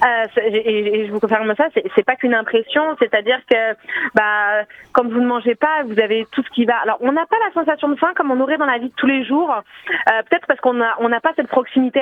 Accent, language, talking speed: French, French, 265 wpm